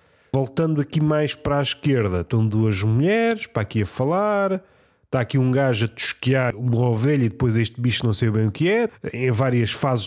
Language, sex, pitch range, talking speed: Portuguese, male, 120-160 Hz, 205 wpm